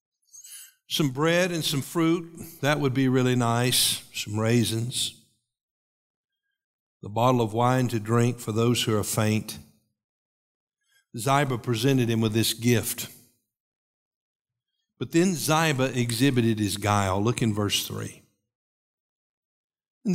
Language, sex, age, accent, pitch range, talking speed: English, male, 50-69, American, 115-165 Hz, 120 wpm